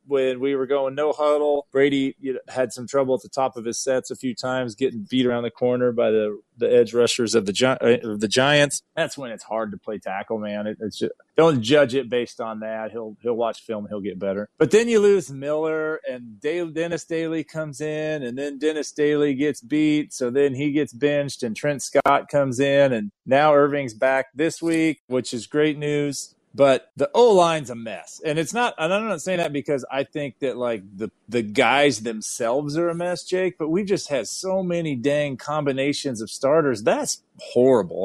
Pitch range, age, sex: 120-155 Hz, 30-49, male